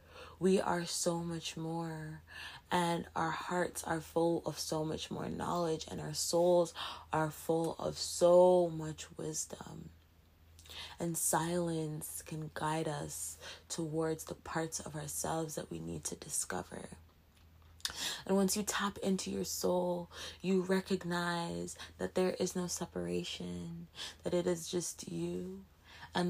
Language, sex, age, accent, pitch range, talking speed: English, female, 20-39, American, 145-180 Hz, 135 wpm